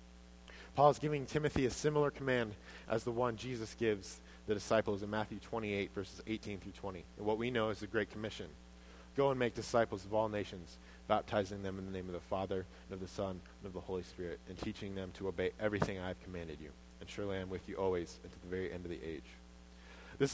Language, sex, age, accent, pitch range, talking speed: English, male, 20-39, American, 75-120 Hz, 225 wpm